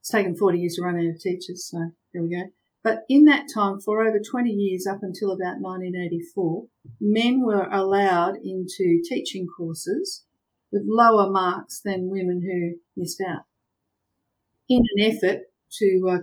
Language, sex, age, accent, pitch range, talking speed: English, female, 50-69, Australian, 170-200 Hz, 165 wpm